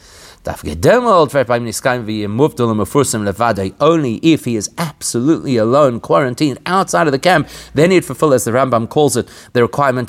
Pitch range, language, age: 105-150 Hz, English, 30-49